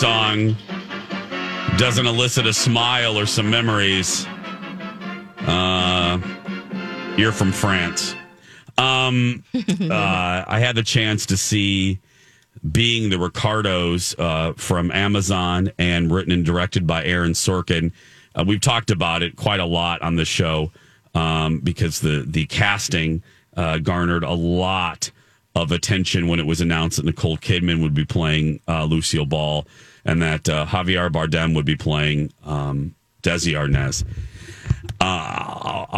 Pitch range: 85-110 Hz